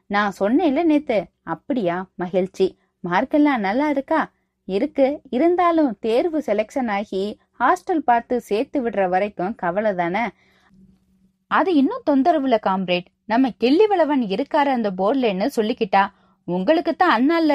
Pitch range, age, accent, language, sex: 195-280 Hz, 20-39, native, Tamil, female